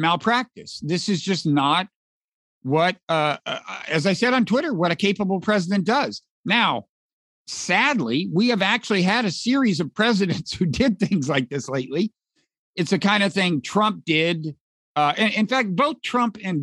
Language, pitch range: English, 150-200 Hz